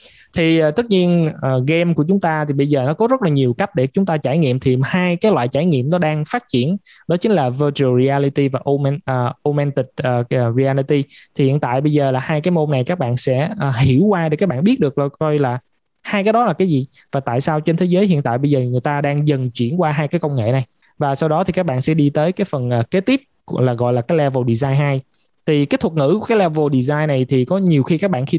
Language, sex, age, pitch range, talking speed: Vietnamese, male, 20-39, 135-175 Hz, 265 wpm